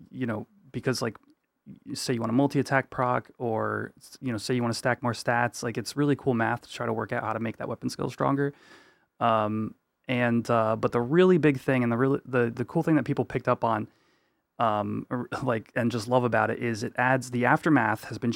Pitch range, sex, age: 115-140 Hz, male, 20-39